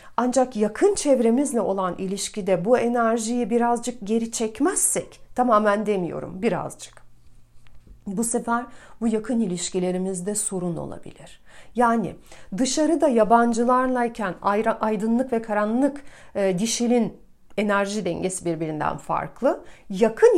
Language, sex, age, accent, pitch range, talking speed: Turkish, female, 40-59, native, 200-260 Hz, 95 wpm